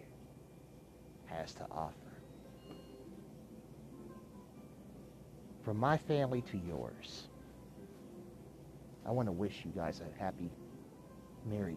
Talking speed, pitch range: 80 wpm, 95-125 Hz